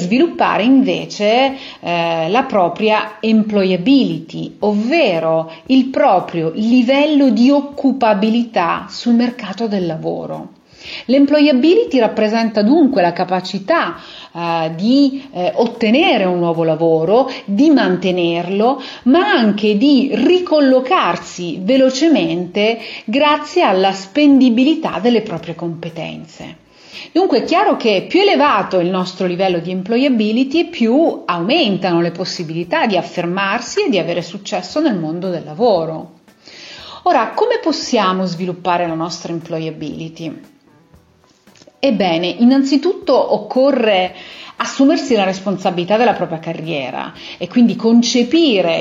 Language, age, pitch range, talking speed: Italian, 40-59, 175-270 Hz, 105 wpm